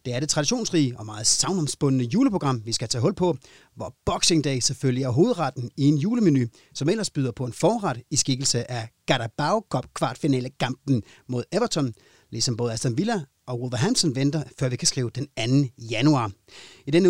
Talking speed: 175 wpm